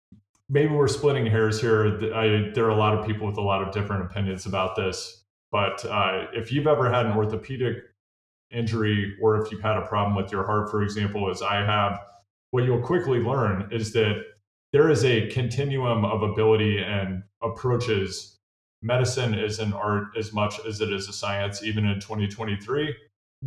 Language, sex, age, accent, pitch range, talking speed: English, male, 30-49, American, 100-115 Hz, 180 wpm